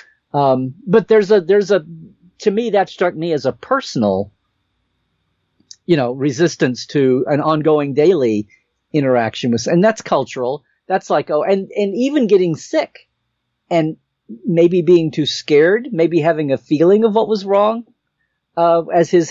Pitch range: 140-195 Hz